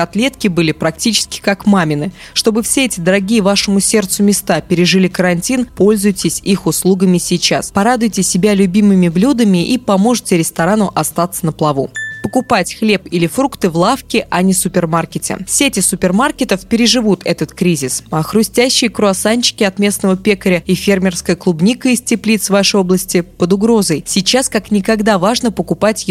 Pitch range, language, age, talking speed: 175-220 Hz, Russian, 20-39, 145 wpm